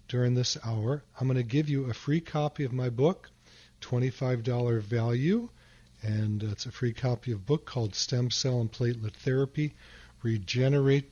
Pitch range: 115-135 Hz